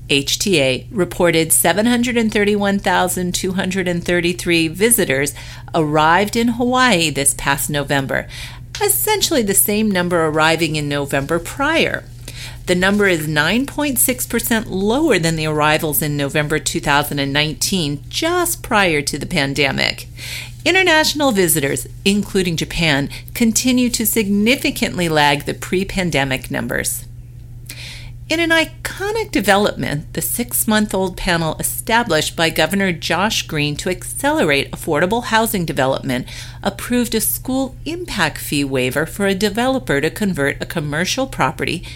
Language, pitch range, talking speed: English, 145-220 Hz, 110 wpm